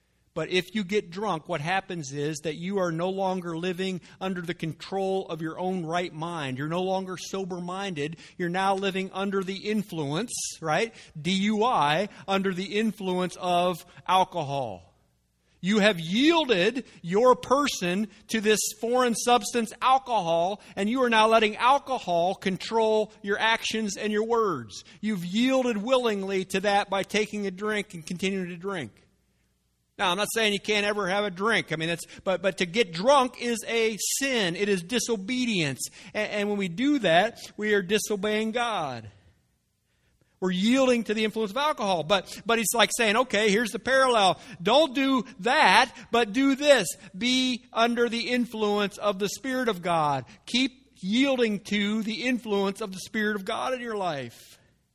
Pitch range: 180-225 Hz